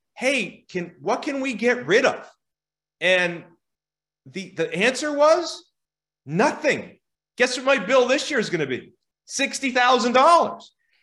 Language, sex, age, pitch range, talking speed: English, male, 30-49, 180-250 Hz, 135 wpm